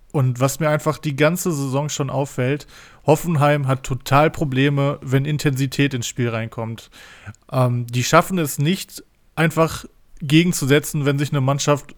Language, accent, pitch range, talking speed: German, German, 130-155 Hz, 145 wpm